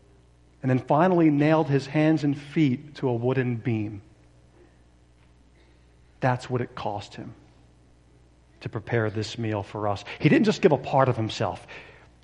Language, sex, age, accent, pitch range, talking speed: English, male, 40-59, American, 105-145 Hz, 150 wpm